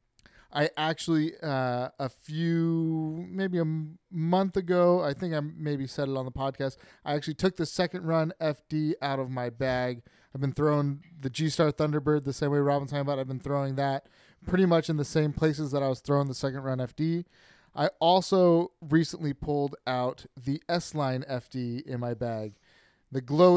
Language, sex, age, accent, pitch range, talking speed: English, male, 30-49, American, 135-165 Hz, 185 wpm